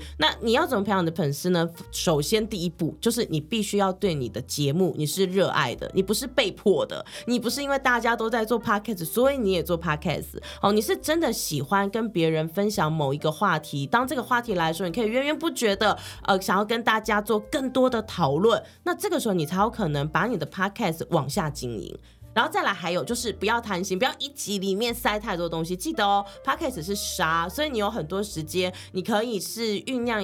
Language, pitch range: Chinese, 170-235 Hz